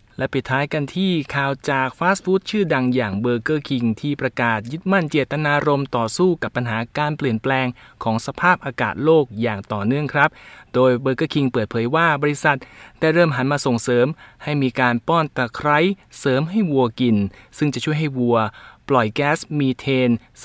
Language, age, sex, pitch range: Thai, 20-39, male, 120-155 Hz